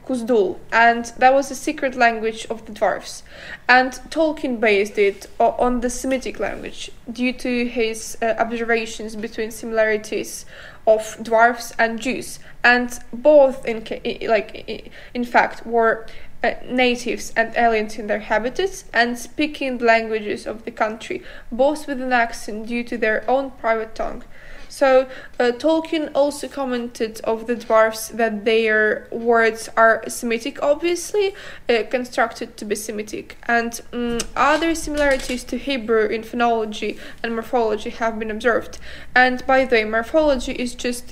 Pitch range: 225-255 Hz